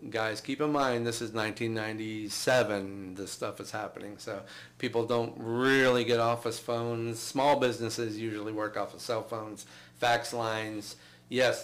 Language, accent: English, American